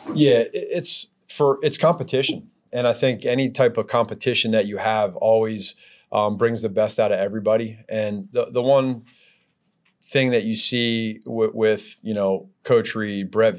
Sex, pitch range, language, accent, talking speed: male, 100-120 Hz, English, American, 170 wpm